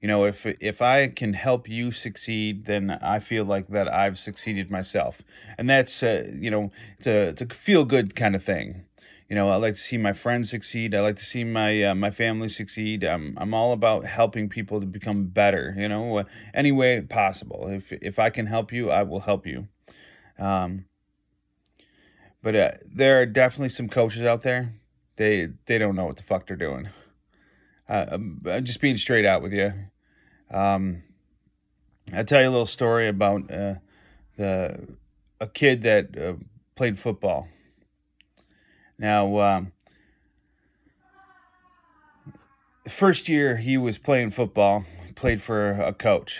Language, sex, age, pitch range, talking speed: English, male, 30-49, 100-120 Hz, 165 wpm